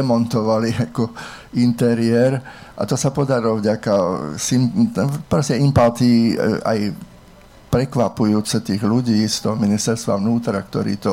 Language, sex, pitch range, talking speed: Slovak, male, 110-120 Hz, 95 wpm